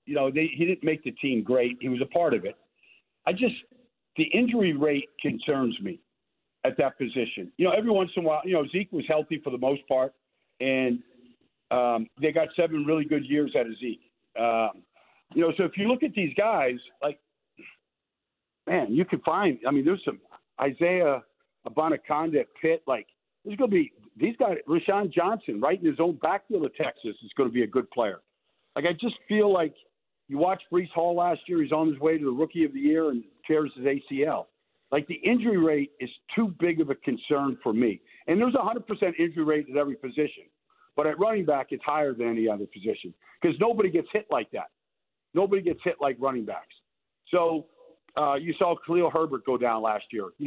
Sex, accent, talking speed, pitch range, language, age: male, American, 205 wpm, 135-190 Hz, English, 50-69